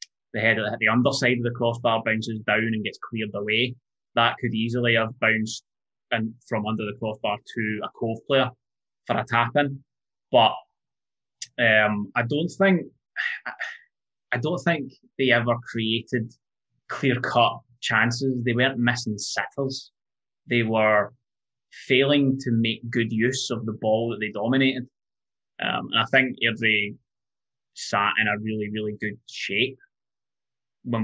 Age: 20-39